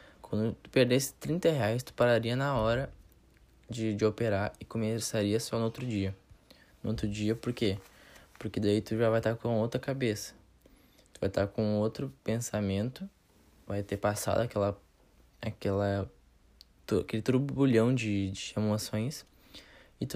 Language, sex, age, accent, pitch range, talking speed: Portuguese, male, 10-29, Brazilian, 100-125 Hz, 150 wpm